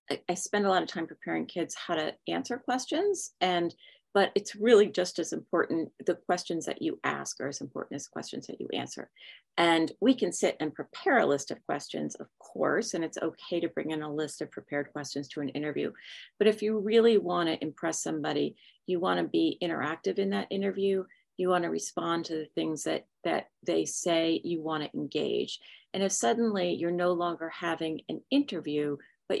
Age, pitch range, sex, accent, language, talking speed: 40-59, 155-195 Hz, female, American, English, 200 wpm